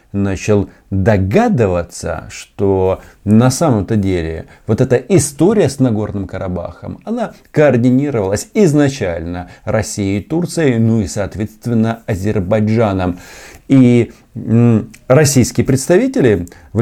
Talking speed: 90 wpm